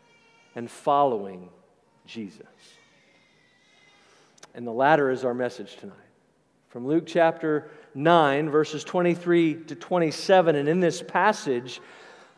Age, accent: 50-69, American